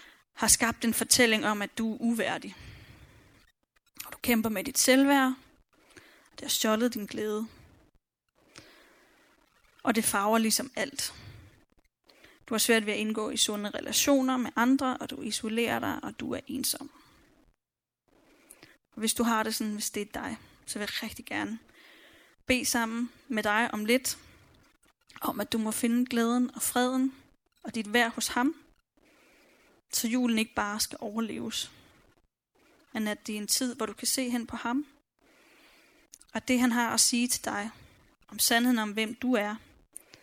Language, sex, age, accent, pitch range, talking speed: Danish, female, 10-29, native, 220-265 Hz, 165 wpm